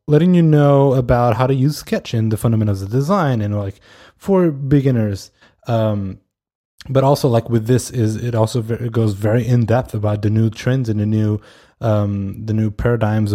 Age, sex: 20-39, male